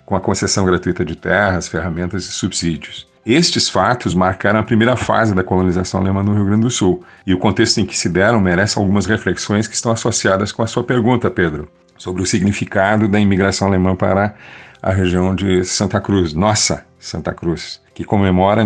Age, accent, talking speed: 40-59, Brazilian, 185 wpm